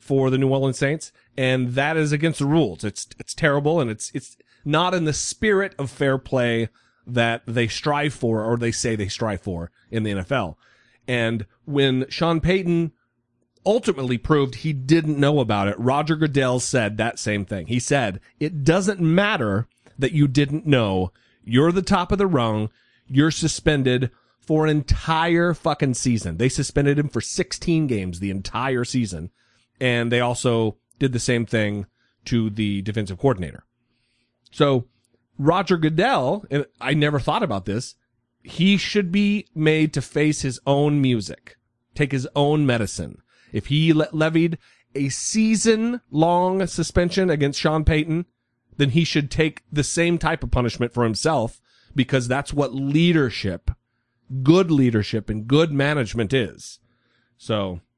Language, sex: English, male